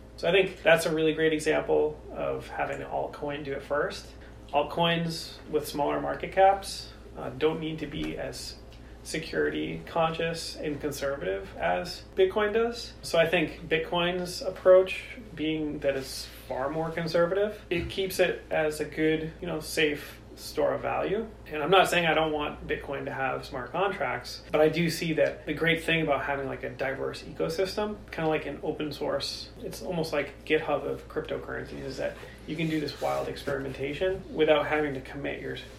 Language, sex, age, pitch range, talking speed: English, male, 30-49, 140-165 Hz, 180 wpm